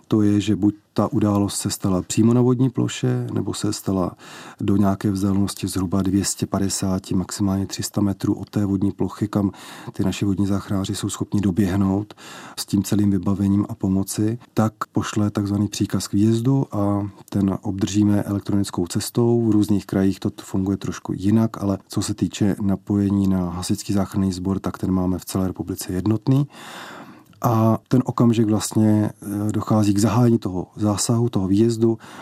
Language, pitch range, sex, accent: Czech, 95-110 Hz, male, native